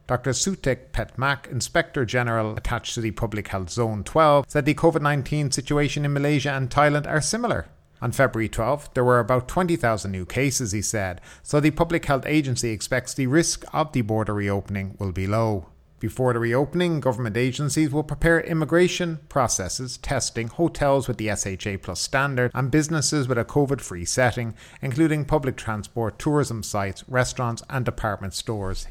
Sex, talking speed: male, 165 wpm